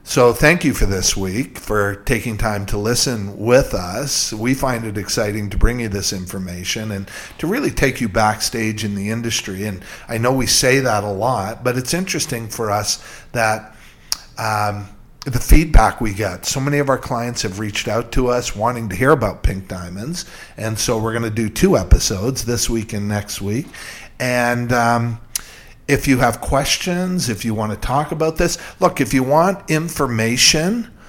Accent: American